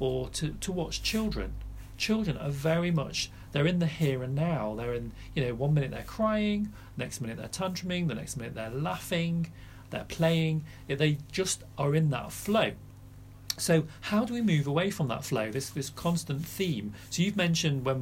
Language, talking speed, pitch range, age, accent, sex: English, 190 wpm, 110-170 Hz, 40-59, British, male